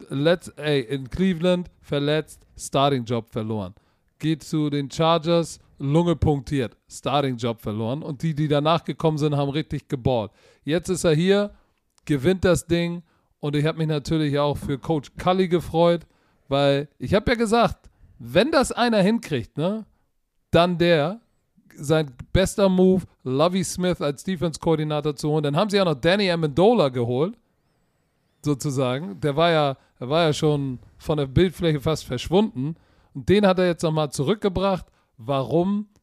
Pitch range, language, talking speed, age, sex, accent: 140-170 Hz, German, 150 wpm, 40-59, male, German